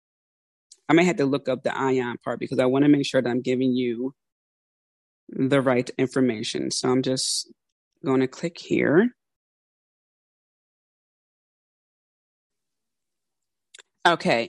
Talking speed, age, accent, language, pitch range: 125 wpm, 20-39, American, English, 135-165 Hz